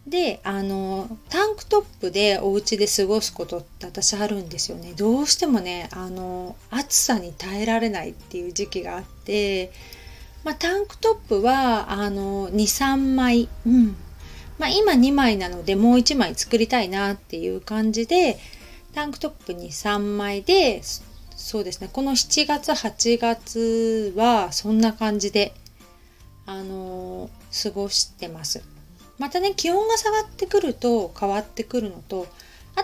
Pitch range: 190-260 Hz